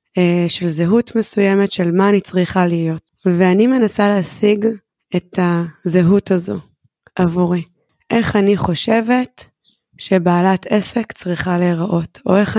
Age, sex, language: 20-39, female, Hebrew